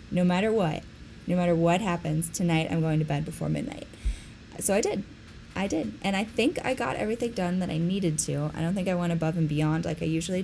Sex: female